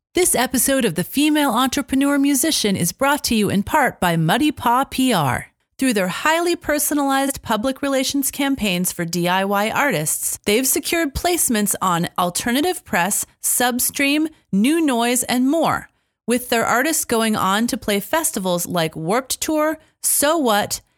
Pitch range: 185-285 Hz